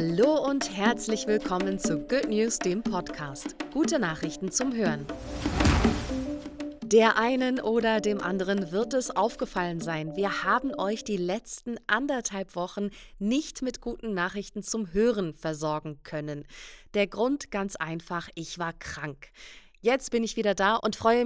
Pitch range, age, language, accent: 160-230 Hz, 30-49, German, German